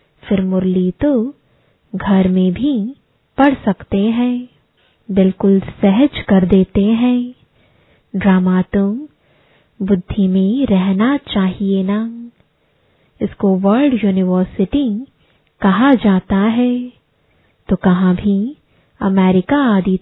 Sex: female